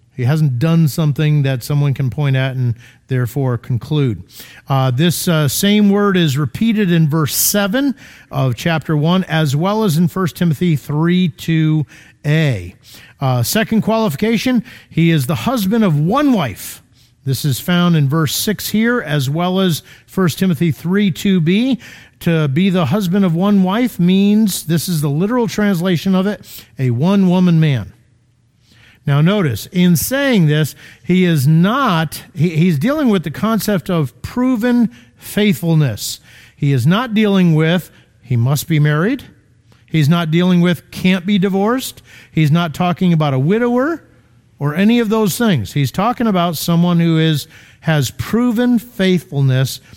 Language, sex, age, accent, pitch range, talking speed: English, male, 50-69, American, 130-190 Hz, 150 wpm